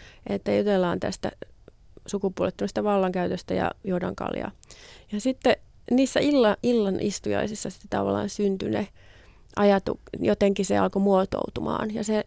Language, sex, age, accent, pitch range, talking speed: Finnish, female, 30-49, native, 190-210 Hz, 110 wpm